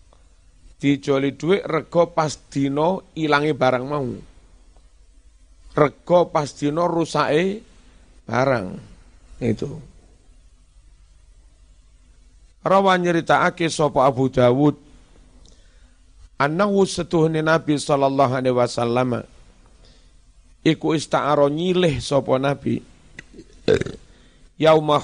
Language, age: Indonesian, 50-69